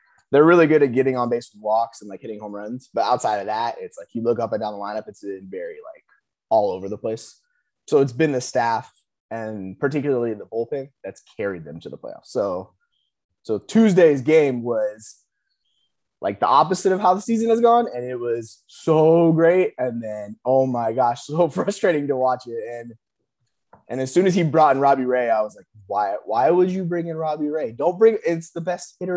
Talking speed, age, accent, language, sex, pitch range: 215 wpm, 20-39, American, English, male, 120-185 Hz